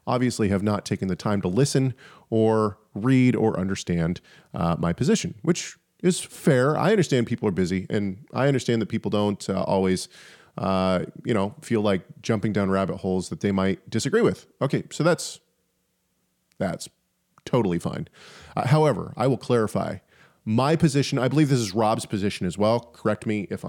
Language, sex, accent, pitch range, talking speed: English, male, American, 100-140 Hz, 175 wpm